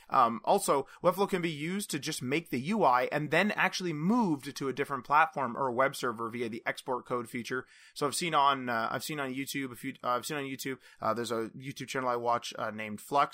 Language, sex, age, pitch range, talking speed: English, male, 30-49, 125-150 Hz, 250 wpm